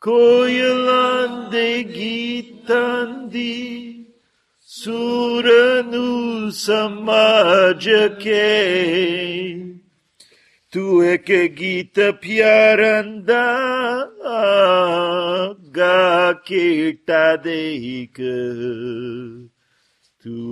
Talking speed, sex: 35 wpm, male